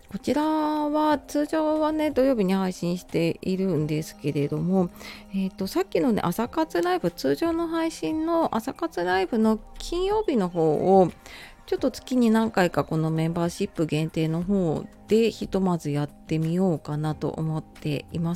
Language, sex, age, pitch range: Japanese, female, 40-59, 160-225 Hz